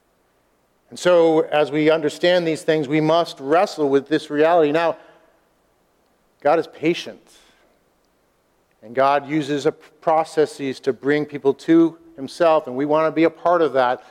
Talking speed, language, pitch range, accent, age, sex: 150 wpm, English, 145-180 Hz, American, 50-69, male